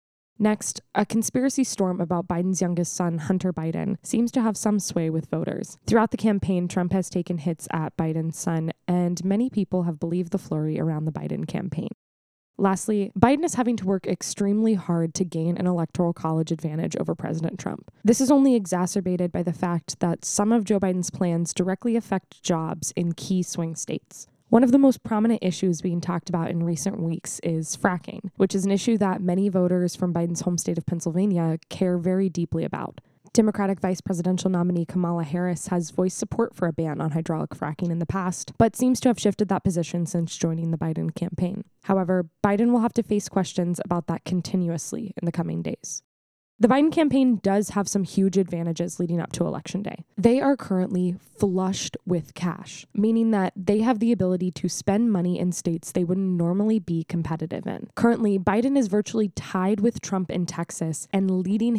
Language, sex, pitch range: English, female, 170-205 Hz